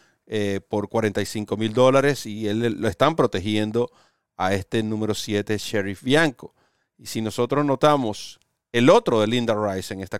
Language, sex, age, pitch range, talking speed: Spanish, male, 40-59, 110-145 Hz, 155 wpm